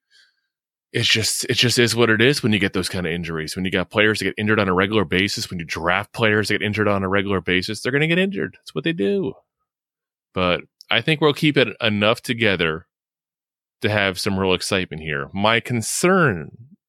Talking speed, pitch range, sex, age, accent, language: 220 wpm, 90-110 Hz, male, 20-39, American, English